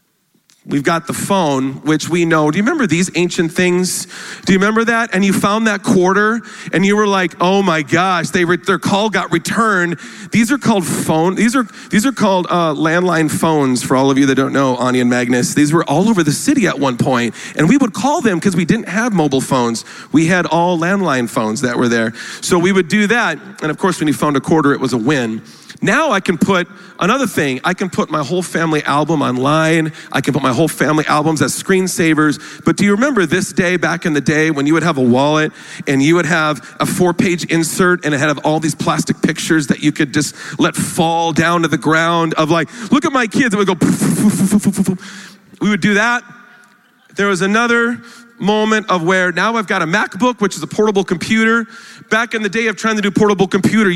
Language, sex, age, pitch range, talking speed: English, male, 40-59, 155-205 Hz, 235 wpm